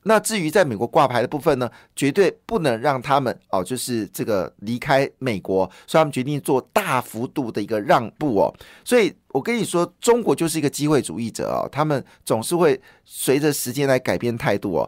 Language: Chinese